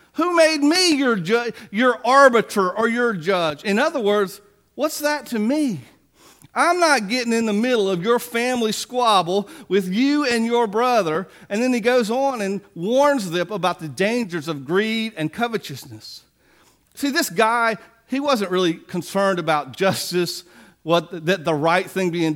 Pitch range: 175-230 Hz